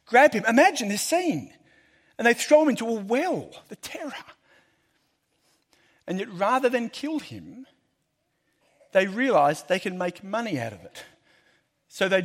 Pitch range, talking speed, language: 150-210 Hz, 150 wpm, English